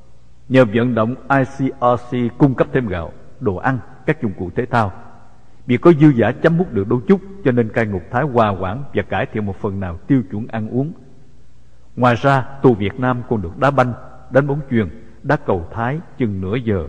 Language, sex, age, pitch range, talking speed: English, male, 60-79, 100-140 Hz, 210 wpm